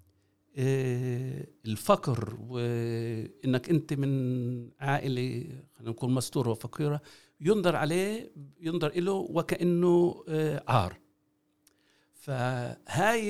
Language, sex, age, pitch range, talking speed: Arabic, male, 60-79, 125-165 Hz, 70 wpm